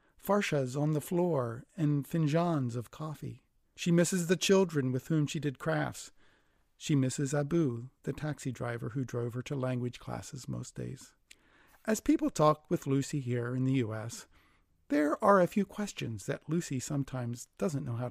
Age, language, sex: 40-59, English, male